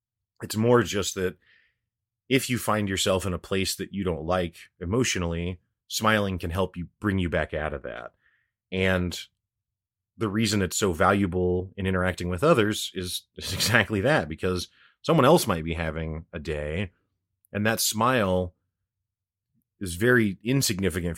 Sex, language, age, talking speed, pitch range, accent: male, English, 30-49, 150 wpm, 85-105 Hz, American